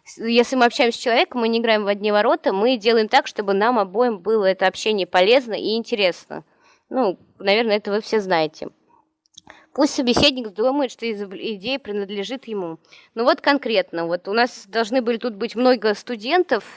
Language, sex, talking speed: Russian, female, 170 wpm